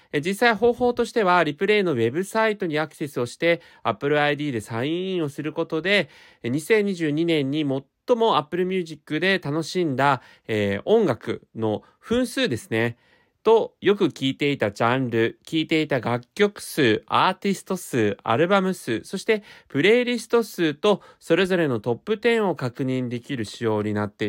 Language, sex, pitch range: Japanese, male, 115-190 Hz